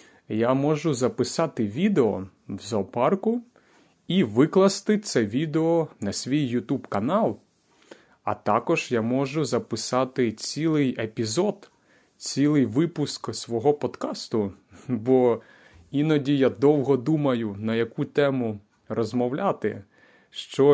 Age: 30-49